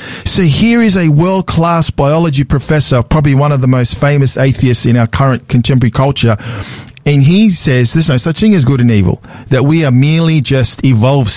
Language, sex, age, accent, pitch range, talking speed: English, male, 50-69, Australian, 125-150 Hz, 190 wpm